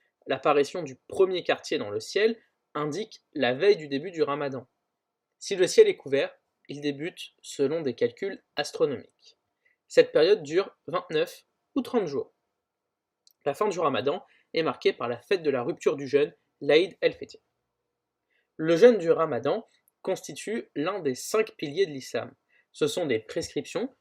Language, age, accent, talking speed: French, 20-39, French, 160 wpm